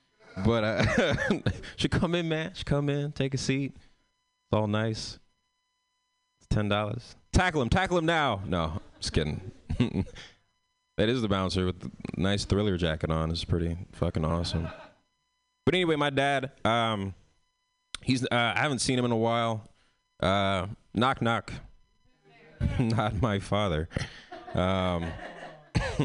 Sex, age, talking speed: male, 20-39, 140 wpm